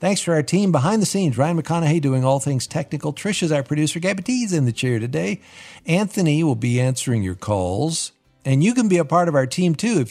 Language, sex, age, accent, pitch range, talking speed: English, male, 50-69, American, 115-155 Hz, 235 wpm